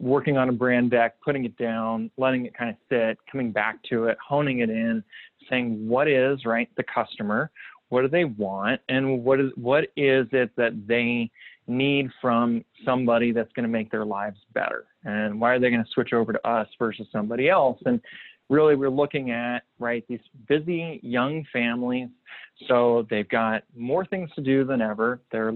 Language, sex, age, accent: English, male, 20-39, American